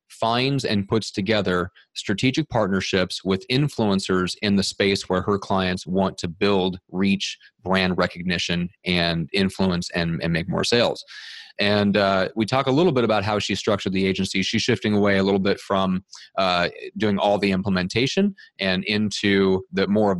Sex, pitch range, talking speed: male, 95-110 Hz, 170 wpm